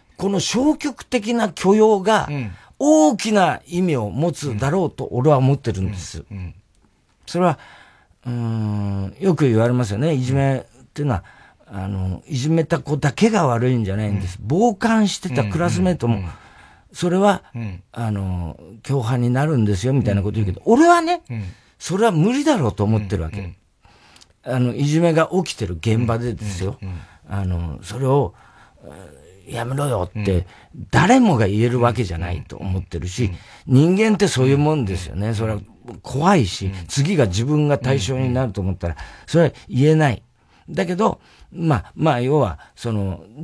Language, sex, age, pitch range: Japanese, male, 40-59, 105-165 Hz